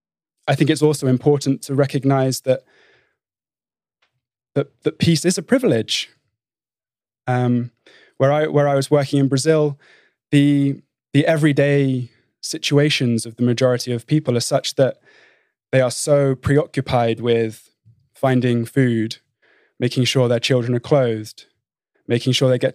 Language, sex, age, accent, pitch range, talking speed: English, male, 20-39, British, 120-145 Hz, 135 wpm